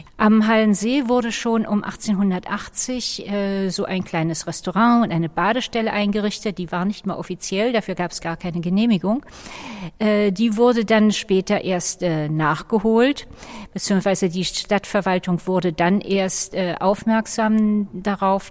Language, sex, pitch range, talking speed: German, female, 185-230 Hz, 140 wpm